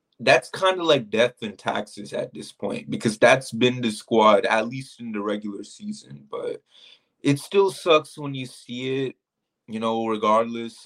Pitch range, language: 110-150 Hz, English